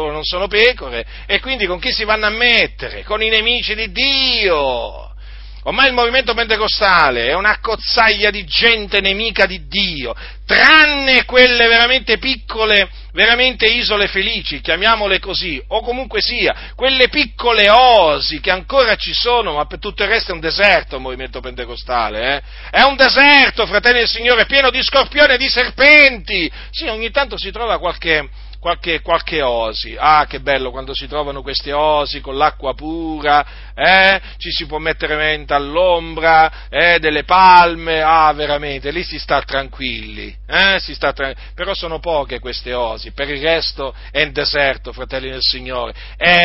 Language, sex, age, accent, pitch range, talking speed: Italian, male, 40-59, native, 150-230 Hz, 160 wpm